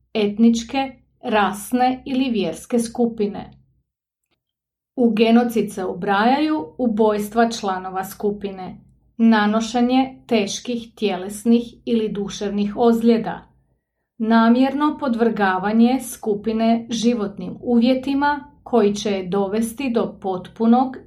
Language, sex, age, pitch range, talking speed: English, female, 30-49, 205-250 Hz, 85 wpm